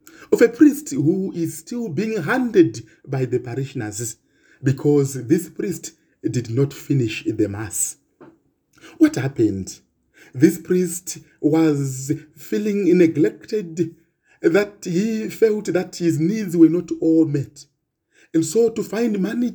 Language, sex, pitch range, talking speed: English, male, 140-185 Hz, 125 wpm